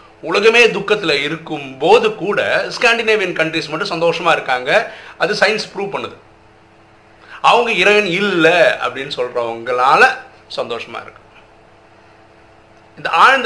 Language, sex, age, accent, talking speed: Tamil, male, 50-69, native, 105 wpm